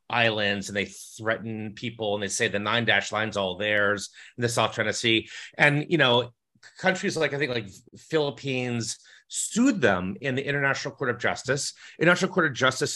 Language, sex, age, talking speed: English, male, 30-49, 185 wpm